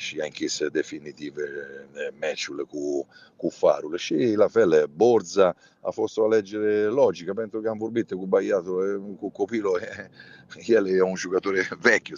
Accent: Italian